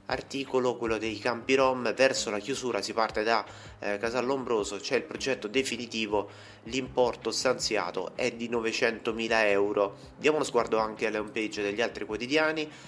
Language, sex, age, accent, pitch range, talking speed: Italian, male, 30-49, native, 100-115 Hz, 155 wpm